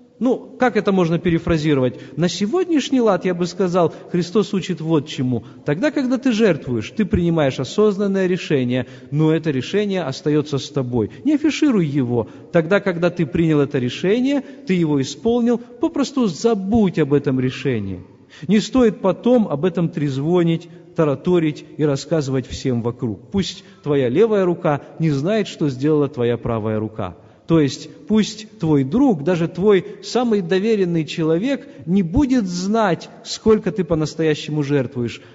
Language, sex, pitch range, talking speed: Russian, male, 140-200 Hz, 145 wpm